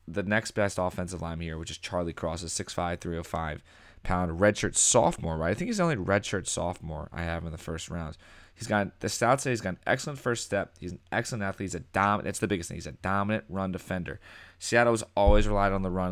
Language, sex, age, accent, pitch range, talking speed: English, male, 20-39, American, 85-110 Hz, 240 wpm